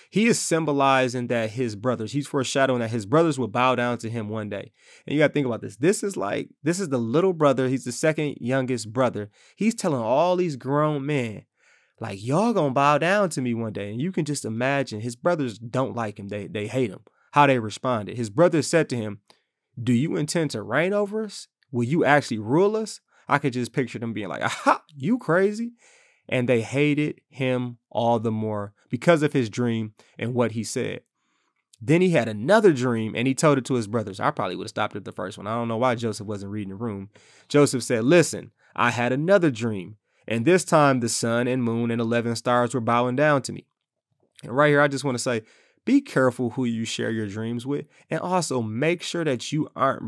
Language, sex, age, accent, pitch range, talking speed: English, male, 20-39, American, 115-150 Hz, 225 wpm